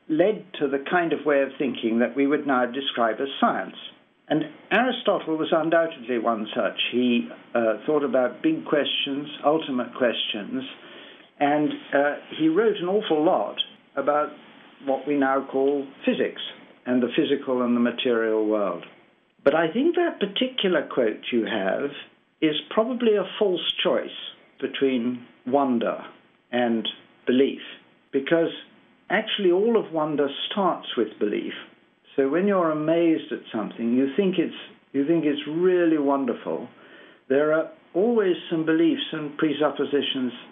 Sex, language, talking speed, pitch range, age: male, English, 140 wpm, 135-170 Hz, 60-79